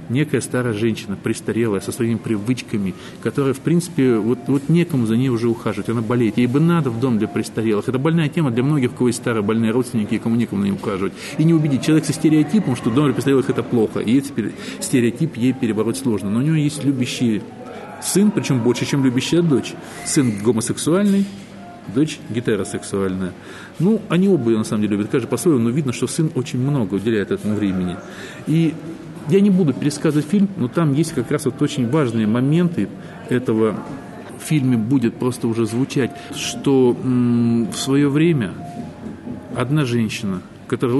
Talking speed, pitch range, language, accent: 175 wpm, 115-155 Hz, Russian, native